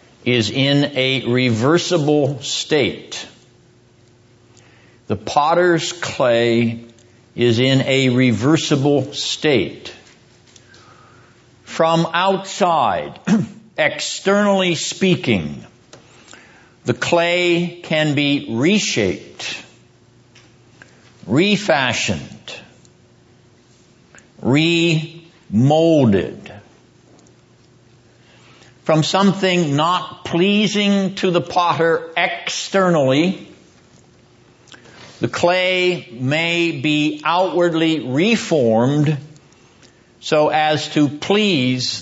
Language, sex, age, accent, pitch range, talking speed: English, male, 60-79, American, 125-170 Hz, 60 wpm